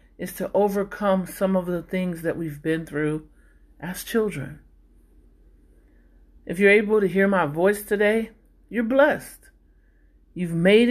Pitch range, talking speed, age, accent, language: 150-205 Hz, 140 wpm, 40-59, American, English